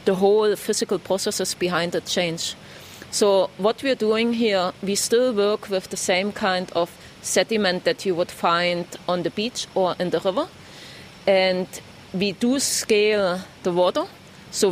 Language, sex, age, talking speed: English, female, 30-49, 160 wpm